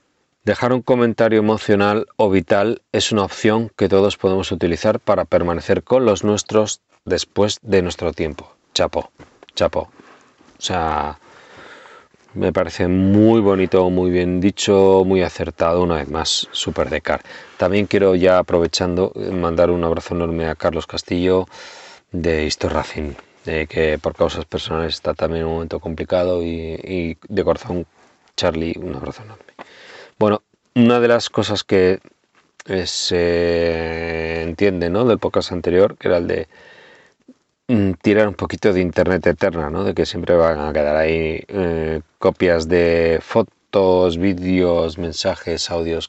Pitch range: 85-105 Hz